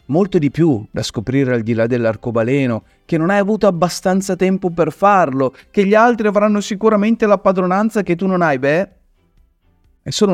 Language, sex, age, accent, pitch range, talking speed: Italian, male, 30-49, native, 115-180 Hz, 180 wpm